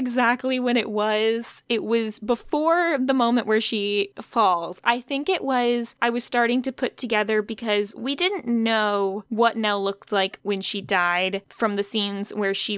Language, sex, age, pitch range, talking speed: English, female, 10-29, 200-235 Hz, 180 wpm